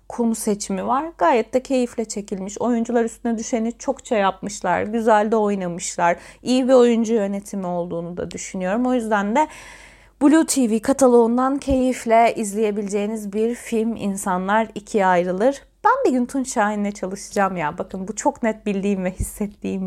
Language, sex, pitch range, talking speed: Turkish, female, 195-250 Hz, 150 wpm